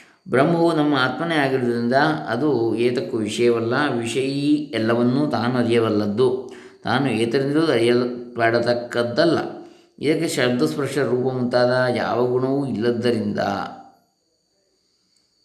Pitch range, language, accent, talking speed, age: 115-150 Hz, Kannada, native, 80 wpm, 20-39